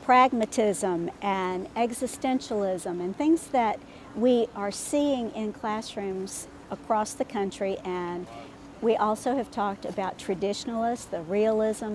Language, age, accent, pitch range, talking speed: English, 50-69, American, 200-245 Hz, 115 wpm